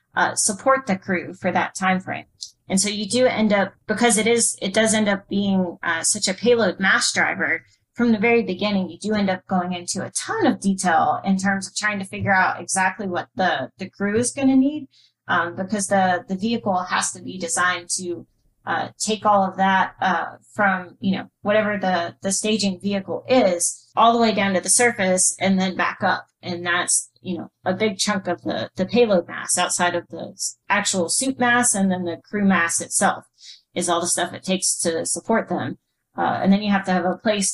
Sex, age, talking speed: female, 30-49, 215 wpm